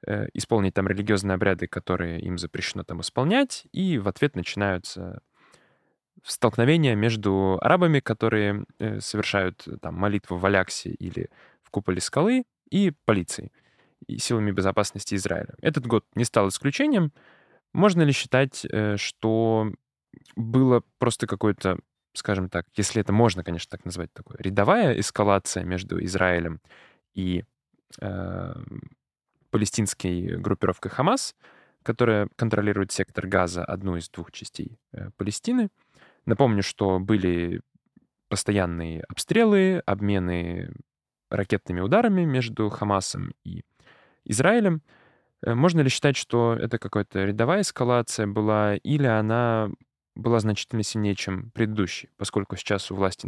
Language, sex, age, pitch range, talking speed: Russian, male, 10-29, 95-120 Hz, 115 wpm